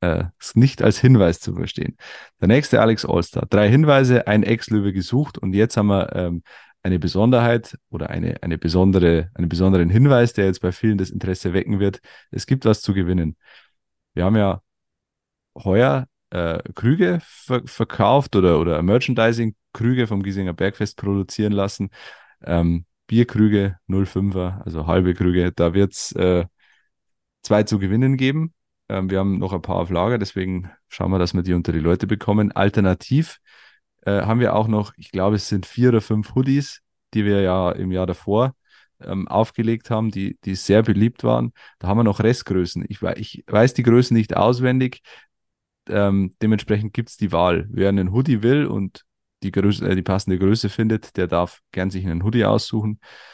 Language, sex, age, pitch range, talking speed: German, male, 30-49, 90-115 Hz, 175 wpm